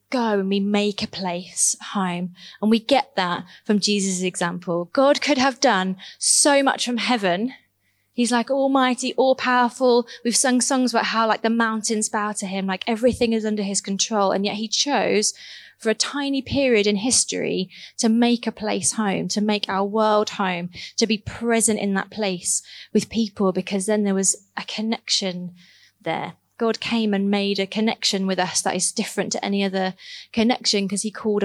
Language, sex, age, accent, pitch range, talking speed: English, female, 20-39, British, 195-230 Hz, 185 wpm